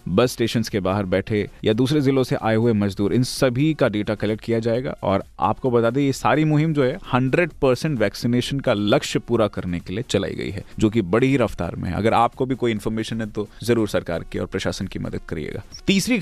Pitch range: 105-140 Hz